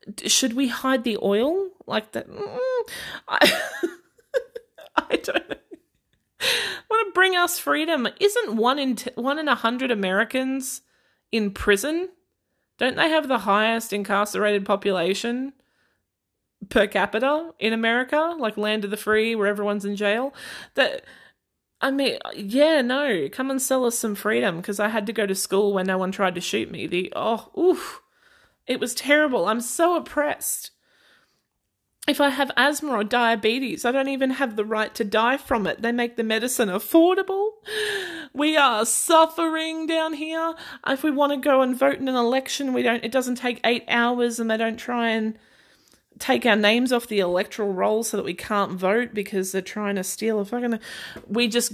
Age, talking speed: 20-39, 175 wpm